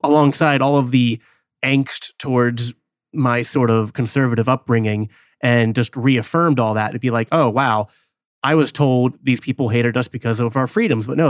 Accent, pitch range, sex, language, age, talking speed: American, 115-135 Hz, male, English, 30-49, 180 wpm